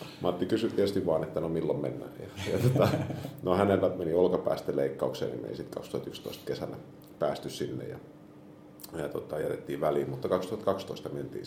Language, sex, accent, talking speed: Finnish, male, native, 155 wpm